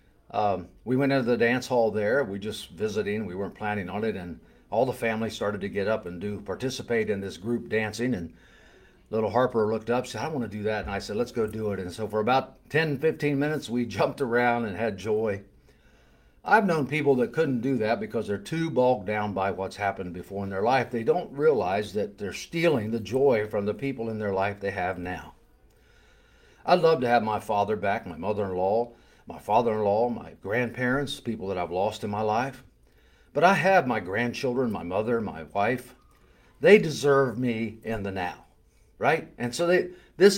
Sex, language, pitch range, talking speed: male, English, 105-135 Hz, 205 wpm